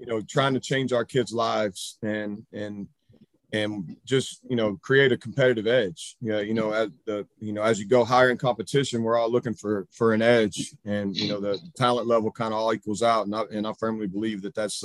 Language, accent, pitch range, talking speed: English, American, 105-130 Hz, 215 wpm